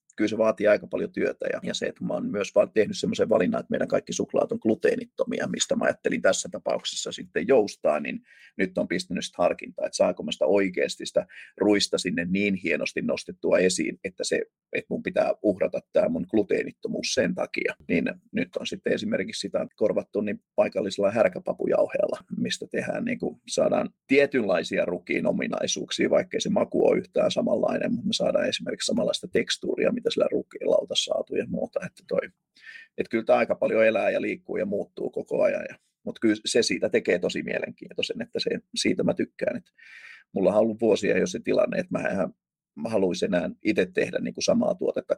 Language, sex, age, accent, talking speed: Finnish, male, 30-49, native, 180 wpm